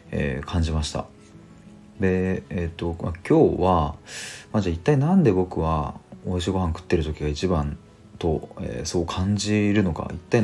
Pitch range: 80-110 Hz